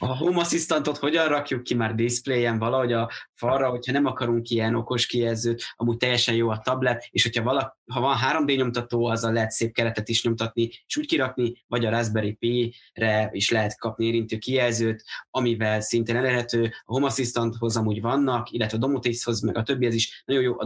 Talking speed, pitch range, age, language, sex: 190 wpm, 115-125 Hz, 20-39, Hungarian, male